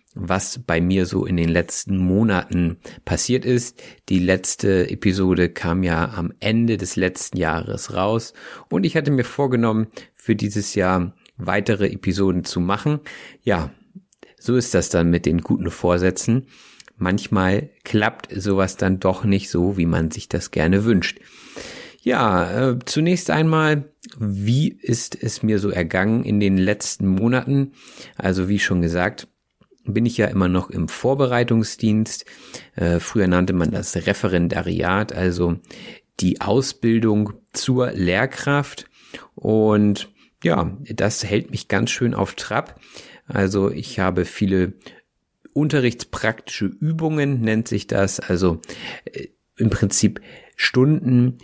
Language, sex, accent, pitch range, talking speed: German, male, German, 90-120 Hz, 130 wpm